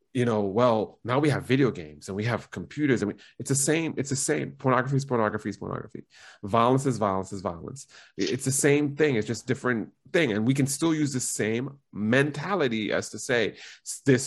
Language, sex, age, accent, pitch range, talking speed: English, male, 30-49, American, 115-140 Hz, 210 wpm